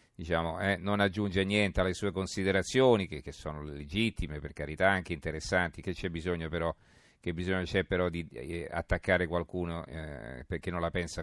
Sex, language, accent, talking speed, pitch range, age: male, Italian, native, 175 wpm, 85-100 Hz, 40-59